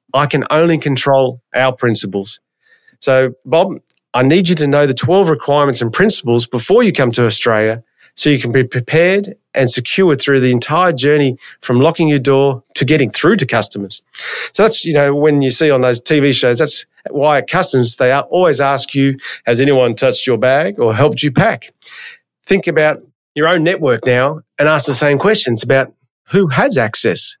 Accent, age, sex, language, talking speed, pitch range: Australian, 30-49, male, English, 190 wpm, 125-155 Hz